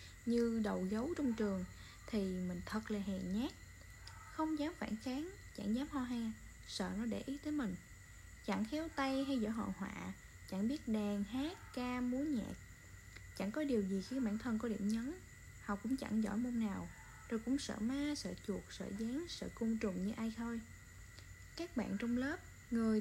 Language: Vietnamese